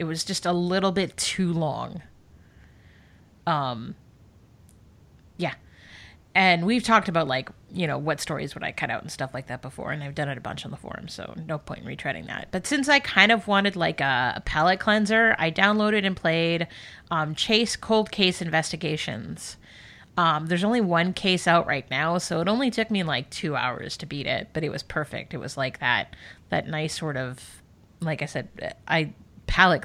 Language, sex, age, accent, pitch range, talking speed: English, female, 30-49, American, 145-190 Hz, 200 wpm